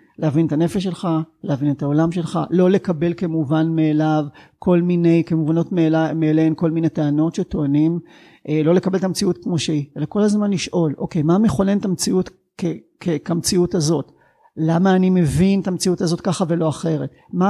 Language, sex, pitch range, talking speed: Hebrew, male, 160-200 Hz, 170 wpm